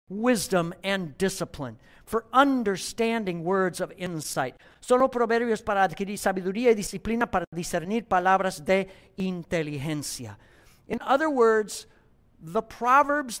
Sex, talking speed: male, 110 wpm